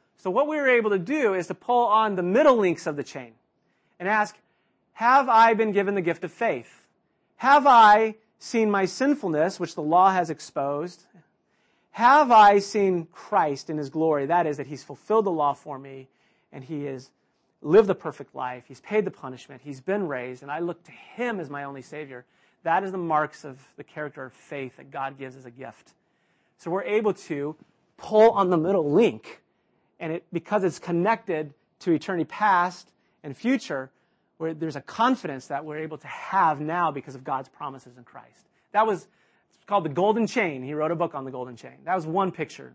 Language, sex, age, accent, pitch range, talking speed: English, male, 40-59, American, 145-210 Hz, 205 wpm